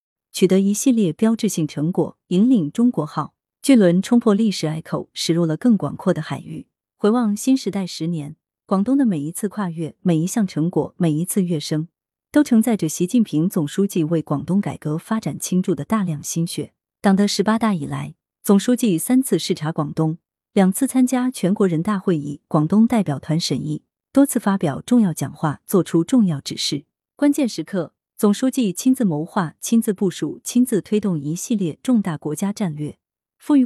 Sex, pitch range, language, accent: female, 160-220 Hz, Chinese, native